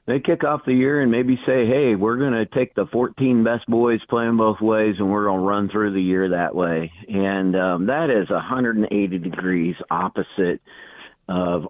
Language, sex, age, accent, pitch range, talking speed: English, male, 50-69, American, 90-110 Hz, 195 wpm